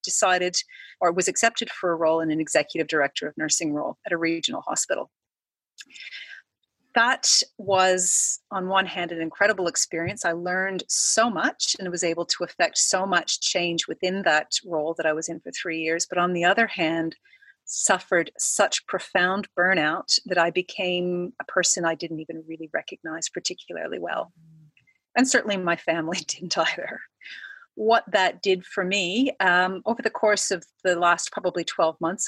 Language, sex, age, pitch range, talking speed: English, female, 40-59, 170-200 Hz, 165 wpm